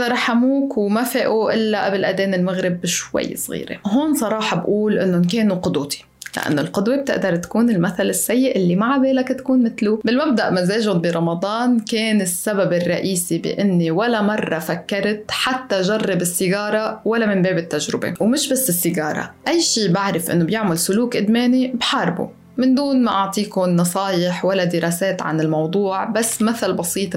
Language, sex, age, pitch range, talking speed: Arabic, female, 20-39, 175-220 Hz, 145 wpm